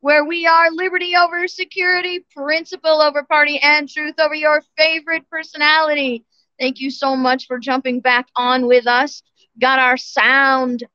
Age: 40-59